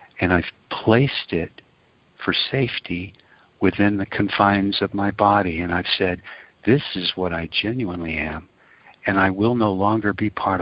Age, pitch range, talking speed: 60-79, 95-110 Hz, 160 wpm